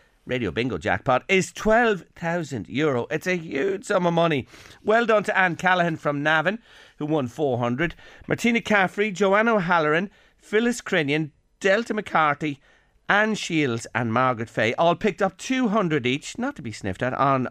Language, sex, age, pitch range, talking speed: English, male, 40-59, 125-185 Hz, 155 wpm